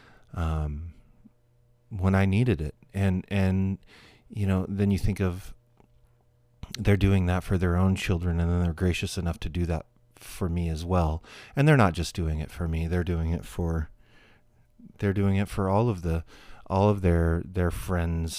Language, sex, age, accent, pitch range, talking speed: English, male, 40-59, American, 85-100 Hz, 185 wpm